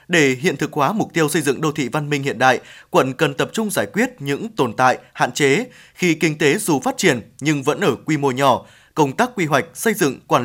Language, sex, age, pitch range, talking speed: Vietnamese, male, 20-39, 140-190 Hz, 255 wpm